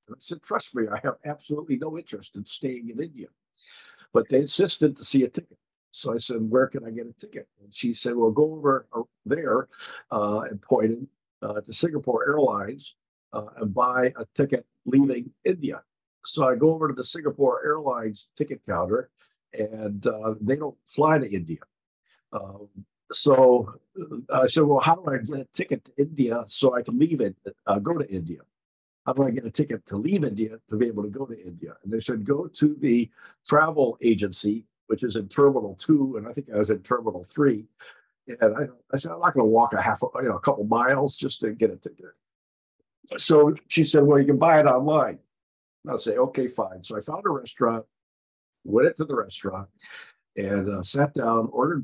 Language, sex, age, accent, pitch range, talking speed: English, male, 50-69, American, 110-140 Hz, 205 wpm